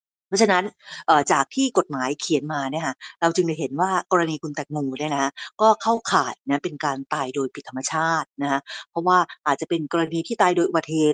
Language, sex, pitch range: Thai, female, 145-195 Hz